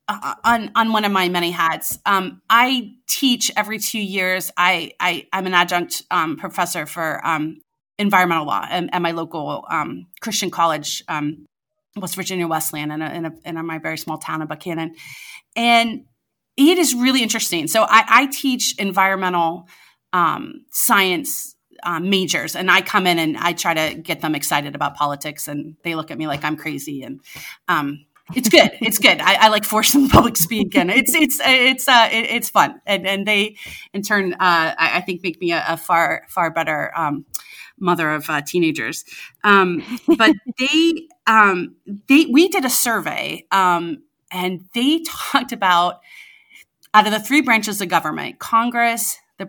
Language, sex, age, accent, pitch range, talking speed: English, female, 30-49, American, 165-230 Hz, 185 wpm